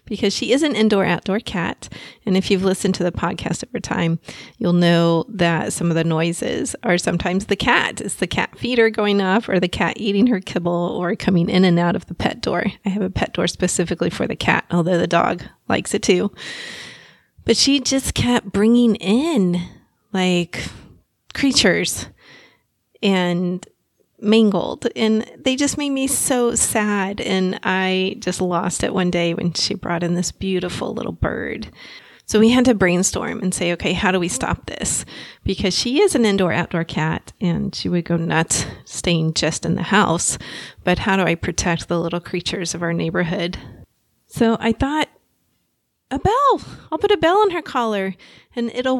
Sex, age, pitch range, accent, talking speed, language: female, 30-49, 175-230 Hz, American, 180 wpm, English